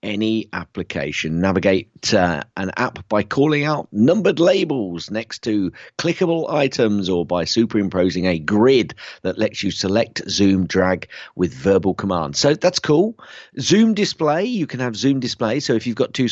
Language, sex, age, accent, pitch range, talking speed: English, male, 40-59, British, 95-140 Hz, 160 wpm